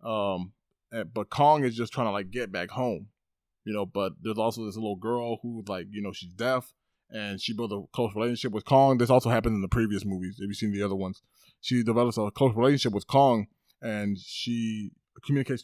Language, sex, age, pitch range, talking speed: English, male, 20-39, 105-135 Hz, 220 wpm